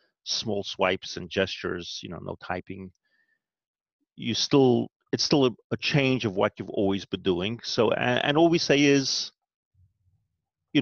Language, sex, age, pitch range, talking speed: English, male, 30-49, 95-120 Hz, 160 wpm